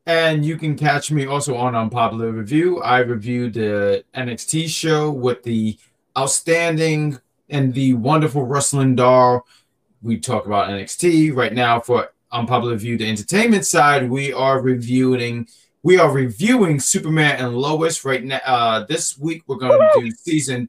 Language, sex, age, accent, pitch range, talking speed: English, male, 30-49, American, 120-155 Hz, 155 wpm